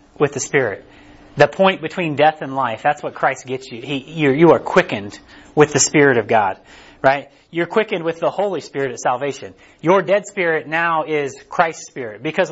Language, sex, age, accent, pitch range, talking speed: English, male, 30-49, American, 135-180 Hz, 195 wpm